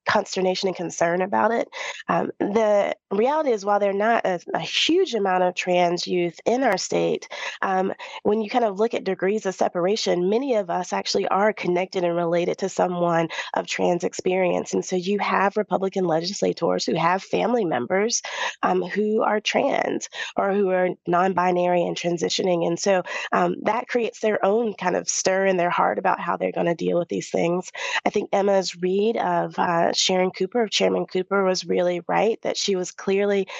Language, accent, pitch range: English, American, 180-215 Hz